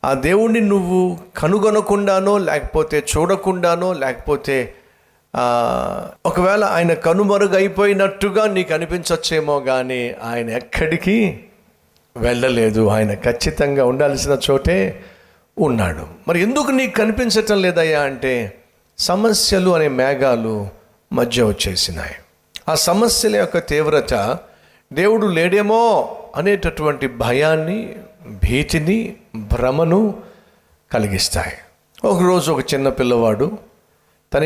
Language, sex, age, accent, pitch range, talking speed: Telugu, male, 50-69, native, 130-190 Hz, 85 wpm